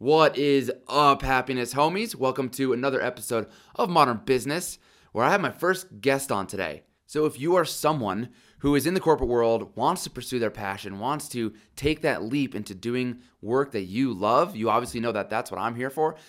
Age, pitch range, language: 20-39, 105-135 Hz, English